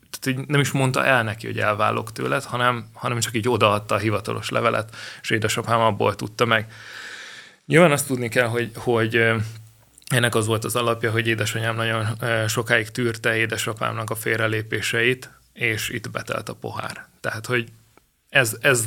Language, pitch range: Hungarian, 110-125 Hz